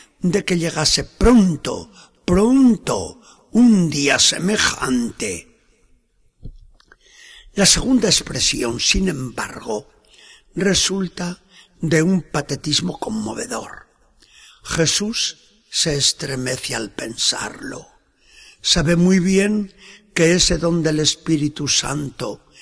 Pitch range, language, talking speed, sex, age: 145-190 Hz, Spanish, 85 wpm, male, 60-79